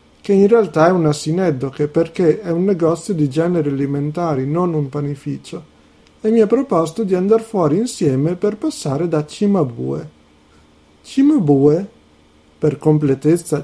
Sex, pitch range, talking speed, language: male, 150-210 Hz, 135 wpm, Italian